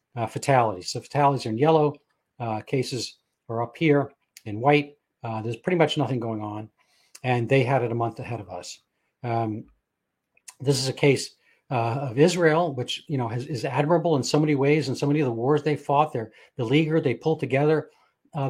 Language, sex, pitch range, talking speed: English, male, 125-155 Hz, 205 wpm